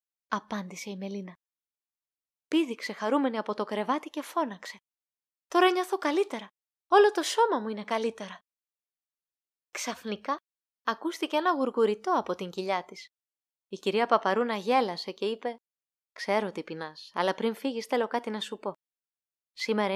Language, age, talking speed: Greek, 20-39, 135 wpm